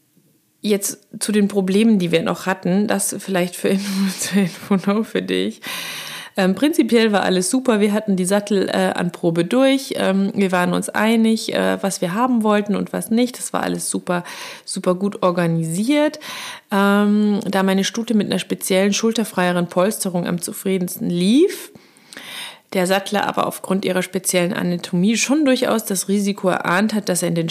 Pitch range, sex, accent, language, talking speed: 180-230 Hz, female, German, German, 170 wpm